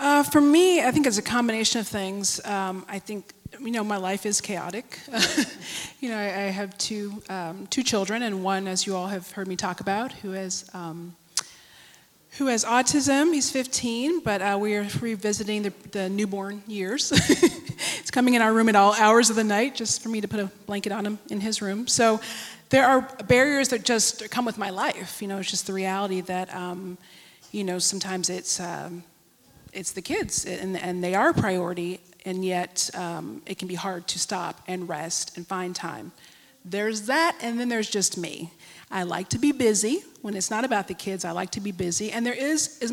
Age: 30-49